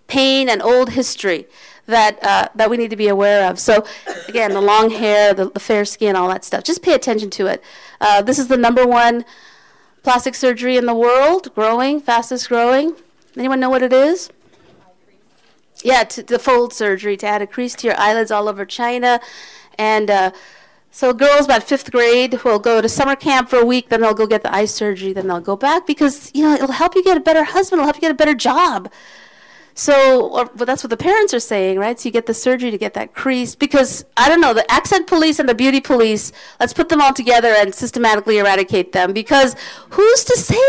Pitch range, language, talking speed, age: 225-295 Hz, English, 220 wpm, 50-69